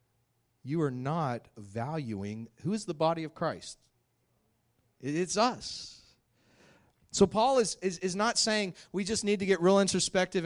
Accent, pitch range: American, 125-195 Hz